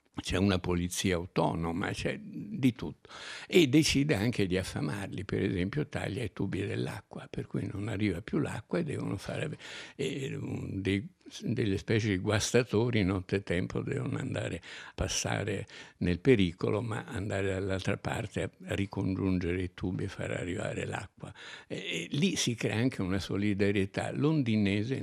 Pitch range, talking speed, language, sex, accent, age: 95-115 Hz, 155 wpm, Italian, male, native, 60-79